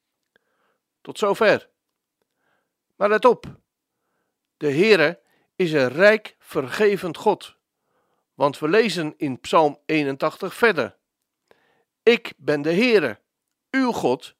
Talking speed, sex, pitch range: 105 wpm, male, 160-220 Hz